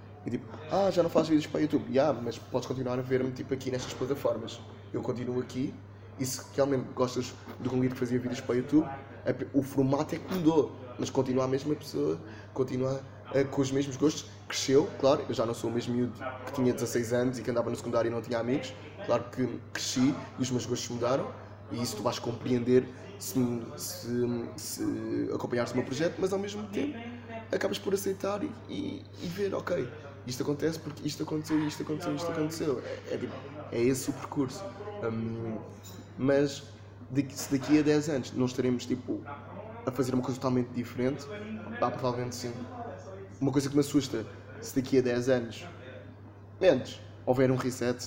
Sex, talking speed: male, 195 wpm